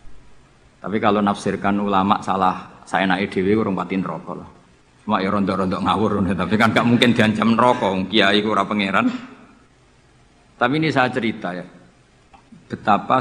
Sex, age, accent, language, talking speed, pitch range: male, 50-69, native, Indonesian, 140 wpm, 95-120 Hz